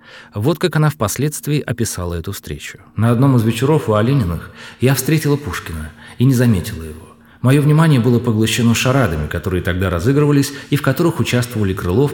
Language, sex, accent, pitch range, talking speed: Russian, male, native, 95-140 Hz, 165 wpm